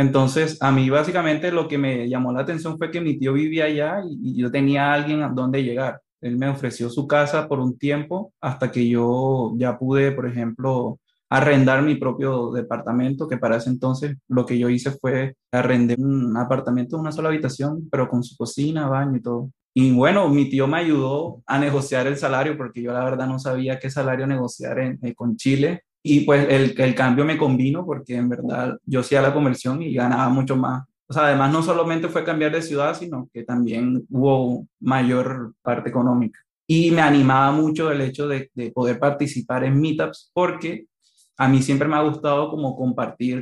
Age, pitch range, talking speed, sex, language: 20-39, 125-145 Hz, 200 wpm, male, Spanish